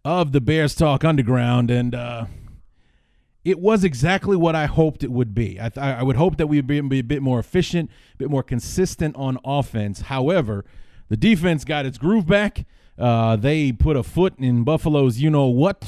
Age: 30-49